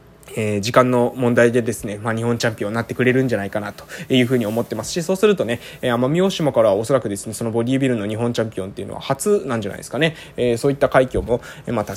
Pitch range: 115-165 Hz